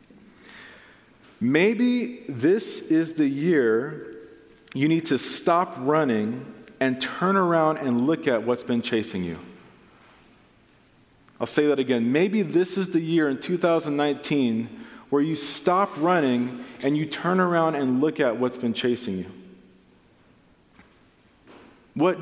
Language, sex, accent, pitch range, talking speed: English, male, American, 125-165 Hz, 125 wpm